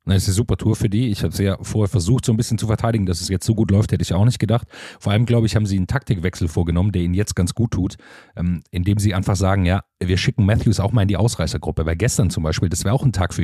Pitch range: 85-105 Hz